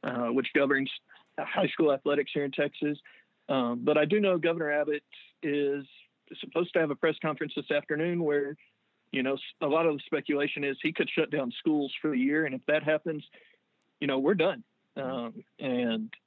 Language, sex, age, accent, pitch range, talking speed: English, male, 40-59, American, 135-155 Hz, 190 wpm